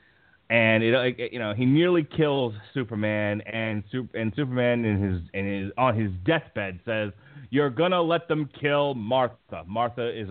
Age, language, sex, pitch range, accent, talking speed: 30-49, English, male, 110-165 Hz, American, 165 wpm